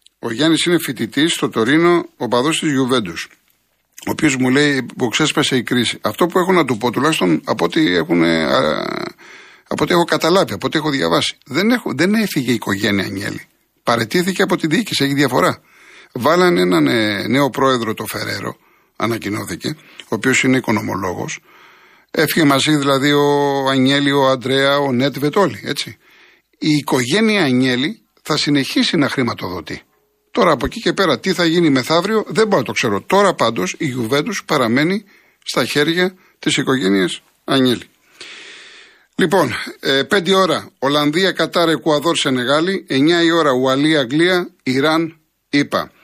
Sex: male